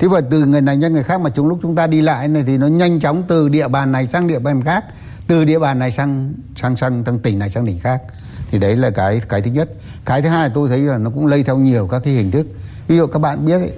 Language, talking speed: Vietnamese, 295 wpm